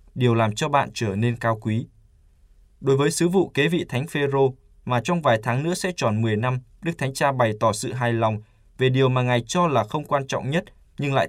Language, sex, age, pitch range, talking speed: Vietnamese, male, 20-39, 110-145 Hz, 245 wpm